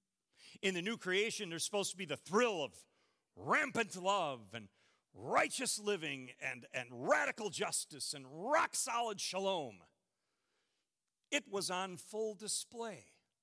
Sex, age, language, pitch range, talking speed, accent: male, 50-69, English, 160-240 Hz, 125 wpm, American